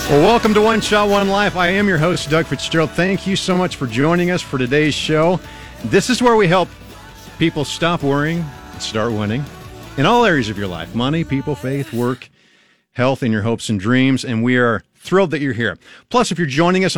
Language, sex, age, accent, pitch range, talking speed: English, male, 50-69, American, 115-165 Hz, 215 wpm